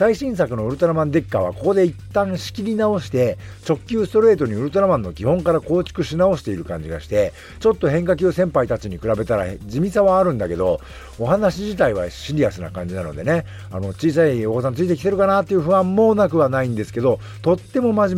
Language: Japanese